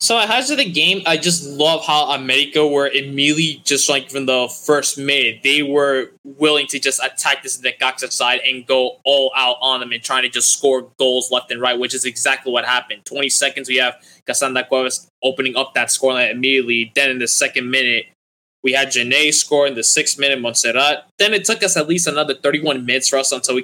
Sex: male